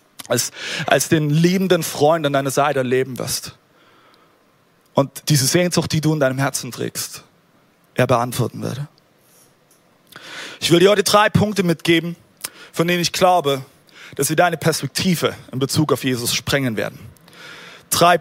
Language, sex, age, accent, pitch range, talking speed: German, male, 30-49, German, 130-175 Hz, 145 wpm